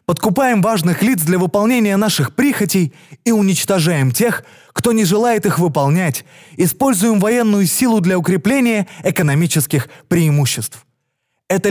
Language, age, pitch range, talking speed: Russian, 20-39, 145-215 Hz, 120 wpm